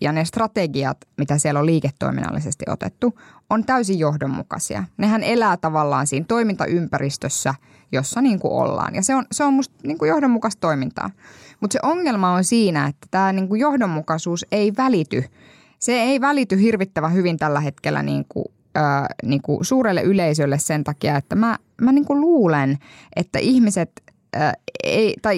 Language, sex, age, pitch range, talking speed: Finnish, female, 10-29, 145-200 Hz, 155 wpm